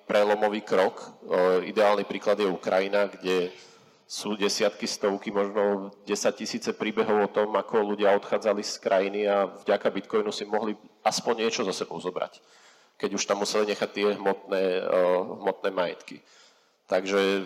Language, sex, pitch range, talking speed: Czech, male, 95-105 Hz, 140 wpm